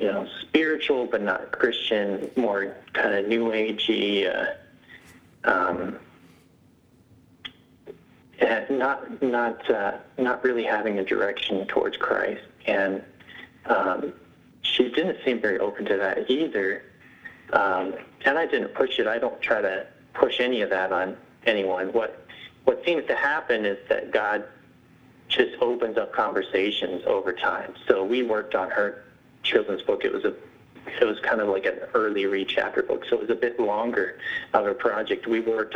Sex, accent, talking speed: male, American, 160 wpm